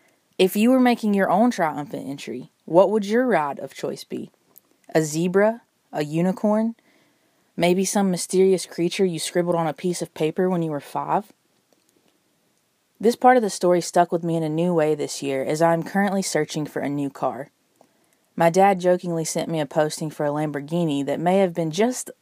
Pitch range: 160-205 Hz